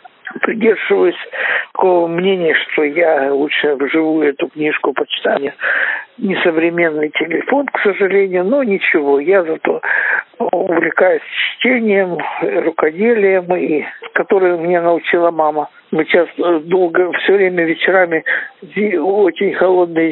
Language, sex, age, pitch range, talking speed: Ukrainian, male, 60-79, 165-260 Hz, 100 wpm